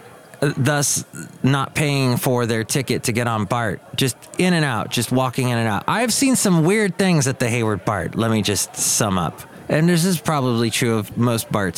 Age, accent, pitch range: 30-49, American, 110-150 Hz